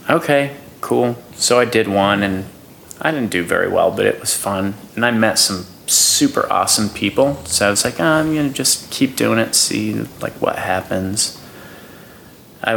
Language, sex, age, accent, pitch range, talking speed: English, male, 30-49, American, 95-120 Hz, 185 wpm